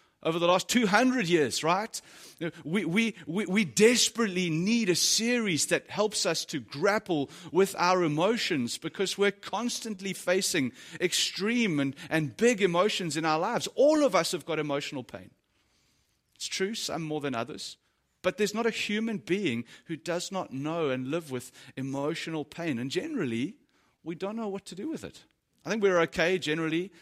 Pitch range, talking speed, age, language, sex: 155-205 Hz, 170 wpm, 30-49, English, male